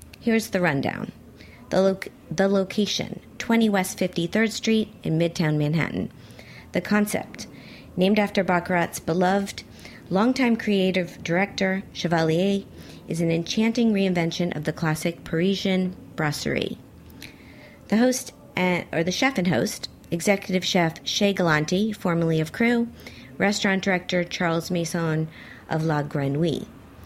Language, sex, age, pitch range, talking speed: English, female, 40-59, 165-210 Hz, 120 wpm